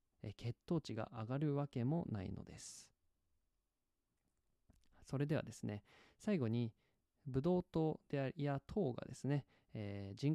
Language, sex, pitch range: Japanese, male, 115-165 Hz